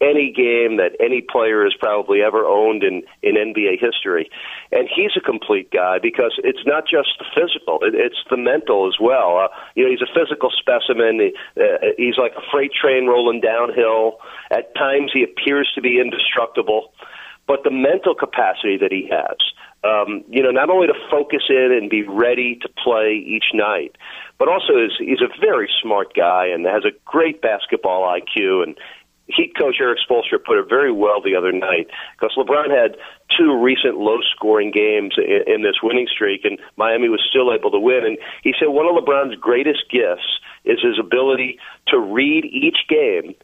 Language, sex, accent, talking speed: English, male, American, 190 wpm